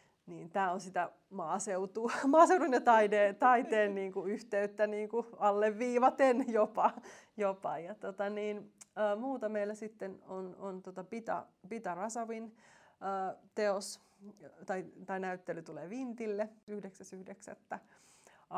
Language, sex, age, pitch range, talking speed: Finnish, female, 30-49, 180-215 Hz, 115 wpm